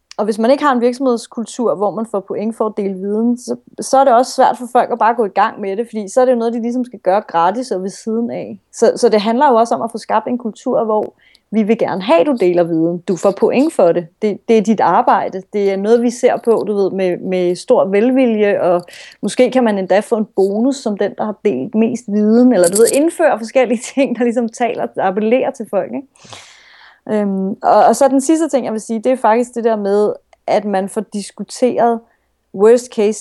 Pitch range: 200-245 Hz